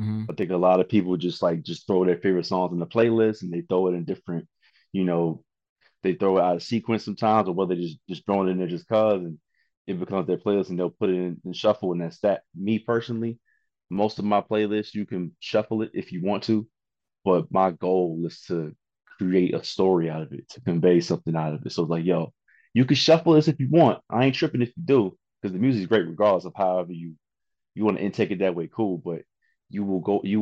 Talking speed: 250 wpm